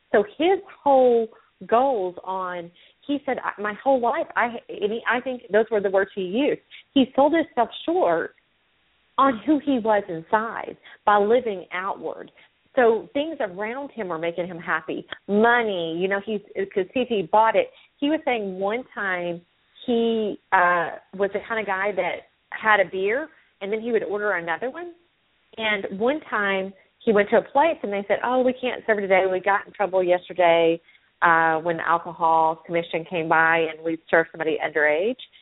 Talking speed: 180 wpm